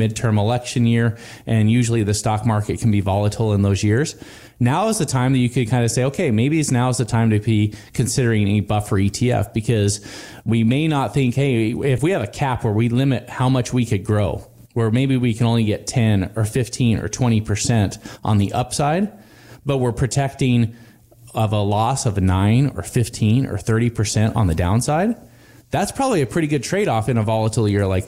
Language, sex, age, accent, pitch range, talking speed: English, male, 30-49, American, 105-130 Hz, 205 wpm